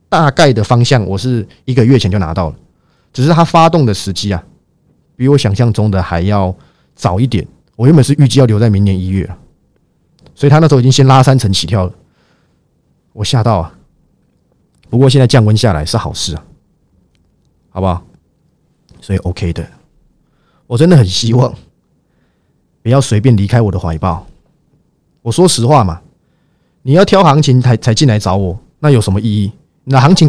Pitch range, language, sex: 105-145 Hz, Chinese, male